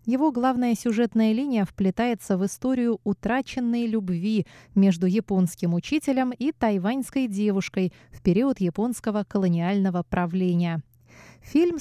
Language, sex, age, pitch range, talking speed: Russian, female, 20-39, 180-235 Hz, 105 wpm